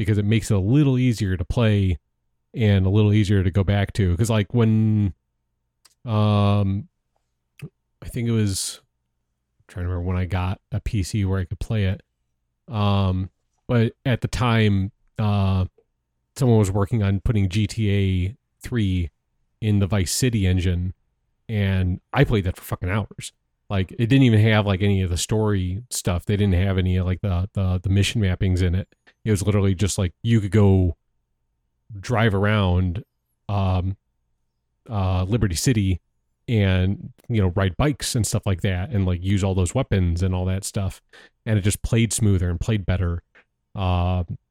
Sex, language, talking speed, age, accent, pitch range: male, English, 175 wpm, 30-49, American, 90-105 Hz